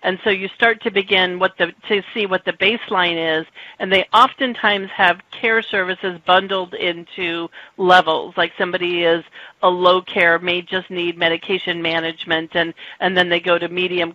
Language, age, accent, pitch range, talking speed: English, 40-59, American, 175-205 Hz, 160 wpm